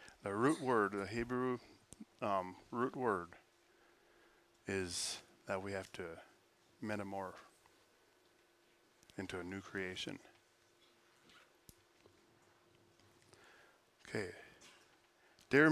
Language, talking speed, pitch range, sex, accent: English, 75 wpm, 115-150 Hz, male, American